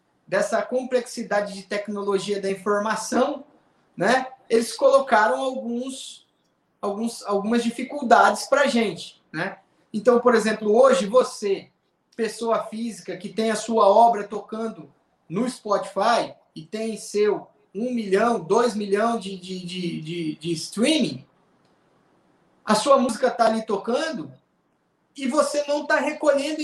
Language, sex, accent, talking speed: Portuguese, male, Brazilian, 125 wpm